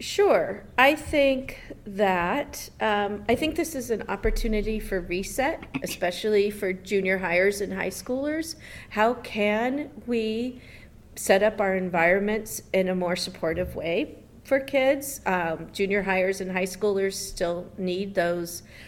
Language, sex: English, female